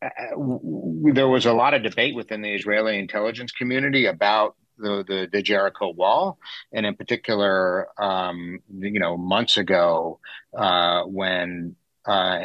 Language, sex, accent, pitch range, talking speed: English, male, American, 85-105 Hz, 150 wpm